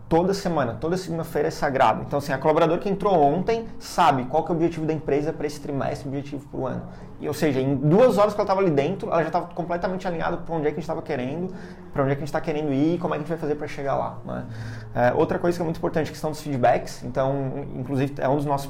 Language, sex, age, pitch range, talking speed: Portuguese, male, 20-39, 135-160 Hz, 295 wpm